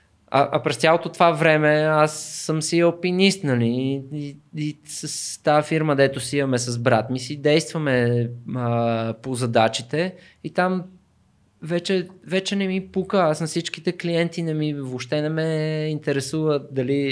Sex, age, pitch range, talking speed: male, 20-39, 135-165 Hz, 160 wpm